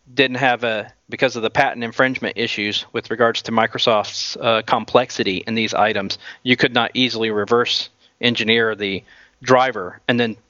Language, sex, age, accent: English, male, 40-59, American